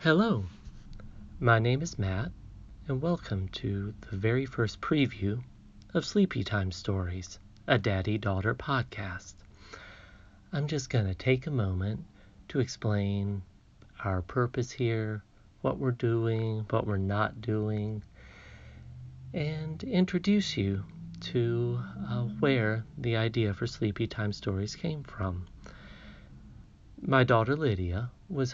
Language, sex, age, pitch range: English, male, 40-59, 100-125 Hz